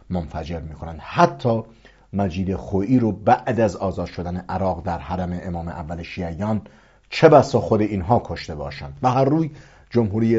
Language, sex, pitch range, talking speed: English, male, 90-120 Hz, 150 wpm